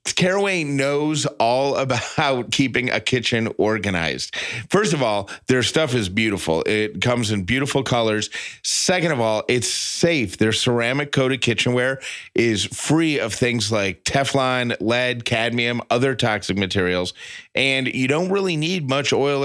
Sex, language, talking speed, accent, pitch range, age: male, English, 145 wpm, American, 105-135 Hz, 30-49